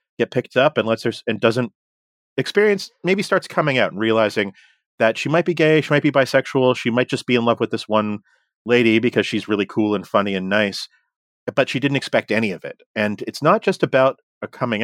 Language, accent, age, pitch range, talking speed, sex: English, American, 40-59, 105-135 Hz, 225 wpm, male